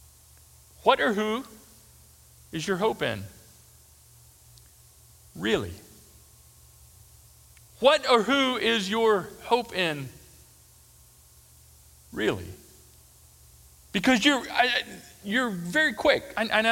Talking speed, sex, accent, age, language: 80 wpm, male, American, 40-59, English